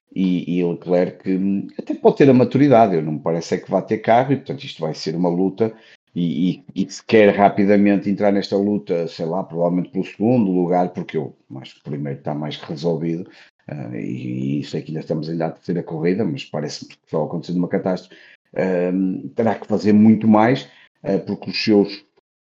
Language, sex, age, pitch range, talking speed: Portuguese, male, 50-69, 90-105 Hz, 205 wpm